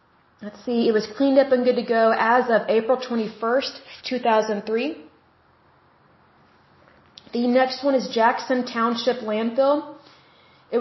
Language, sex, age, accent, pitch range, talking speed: Hindi, female, 30-49, American, 225-260 Hz, 145 wpm